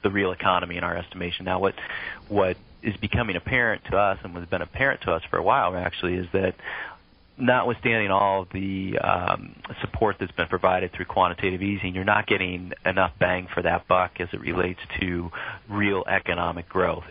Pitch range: 90-95 Hz